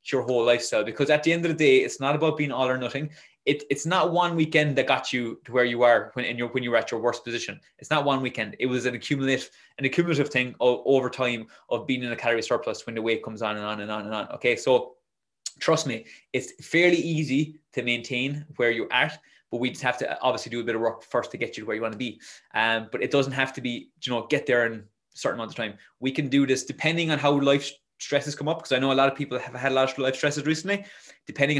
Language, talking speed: English, 280 wpm